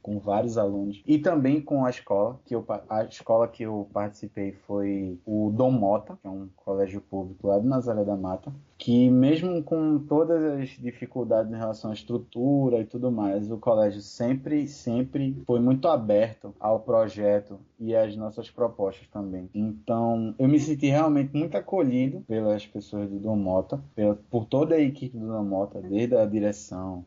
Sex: male